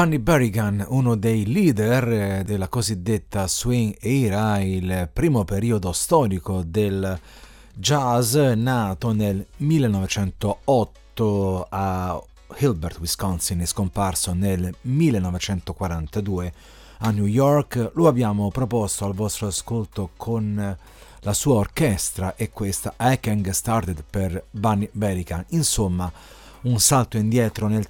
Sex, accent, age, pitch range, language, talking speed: male, native, 40-59, 95-125 Hz, Italian, 110 wpm